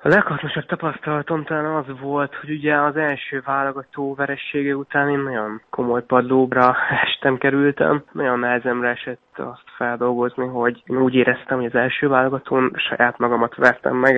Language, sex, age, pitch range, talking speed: Hungarian, male, 20-39, 120-140 Hz, 150 wpm